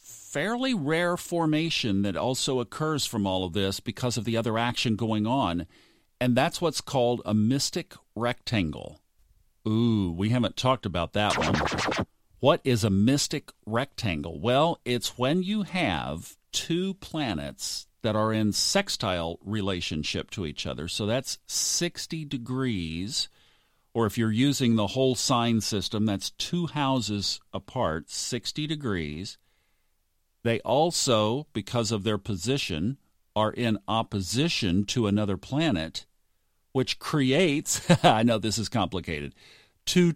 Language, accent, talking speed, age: English, American, 135 wpm, 50-69